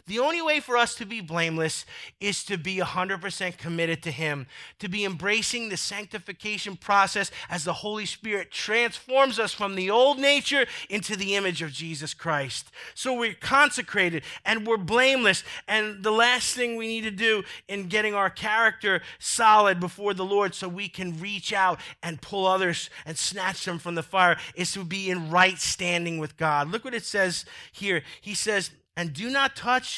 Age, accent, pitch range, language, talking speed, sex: 30-49, American, 175-230 Hz, English, 185 wpm, male